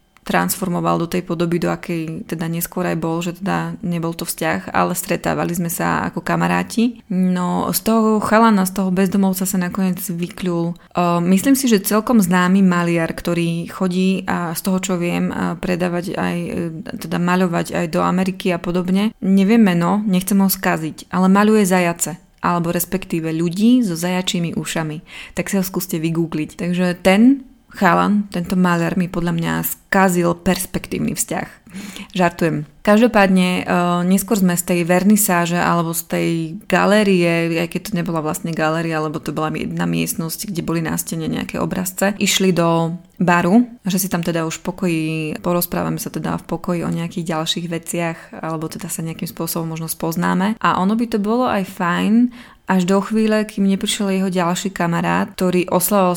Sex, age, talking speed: female, 20-39, 165 wpm